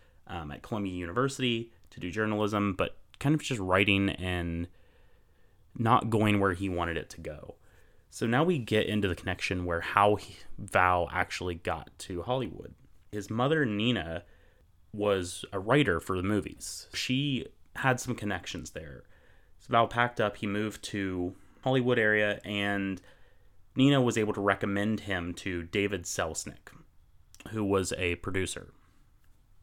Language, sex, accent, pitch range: English, male, American, 90-110 Hz